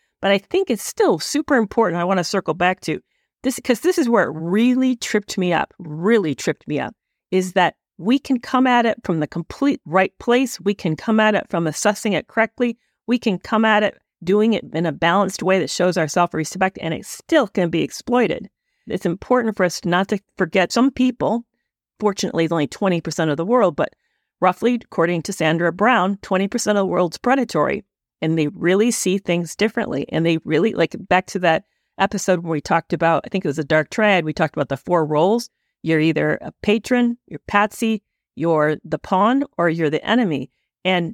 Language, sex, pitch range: English, female, 165-225 Hz